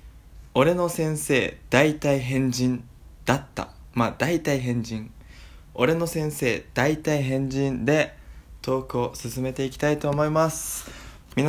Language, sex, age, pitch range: Japanese, male, 20-39, 110-145 Hz